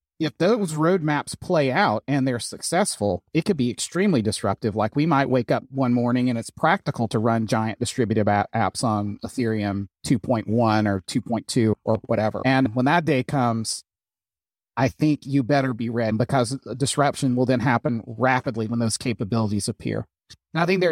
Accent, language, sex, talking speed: American, English, male, 175 wpm